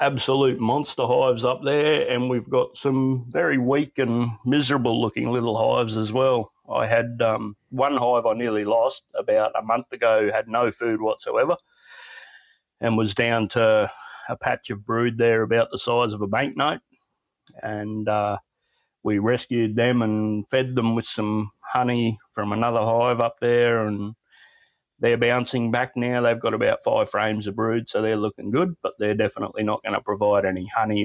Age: 30-49